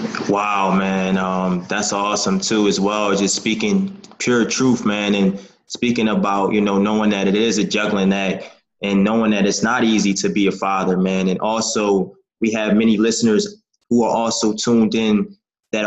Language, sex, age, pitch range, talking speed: English, male, 20-39, 100-115 Hz, 180 wpm